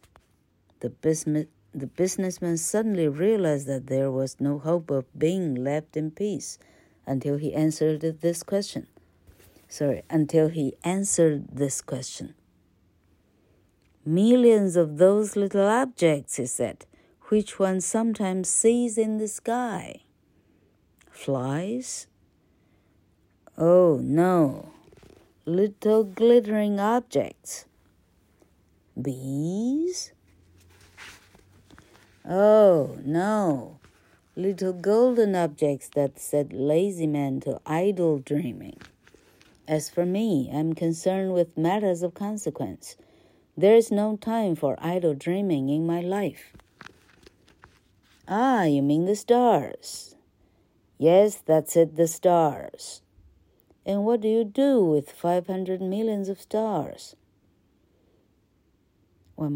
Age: 50-69